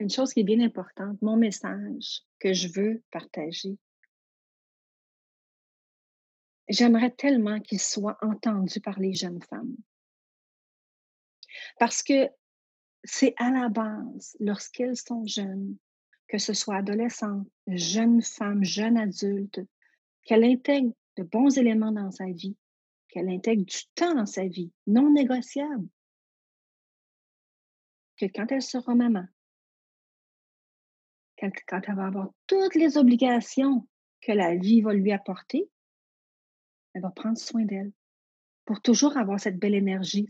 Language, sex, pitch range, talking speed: French, female, 200-250 Hz, 125 wpm